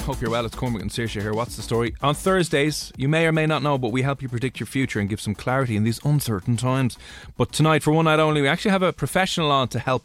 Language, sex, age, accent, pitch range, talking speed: English, male, 20-39, Irish, 110-145 Hz, 285 wpm